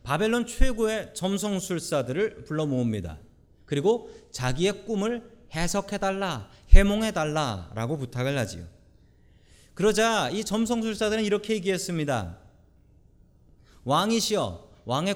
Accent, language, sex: native, Korean, male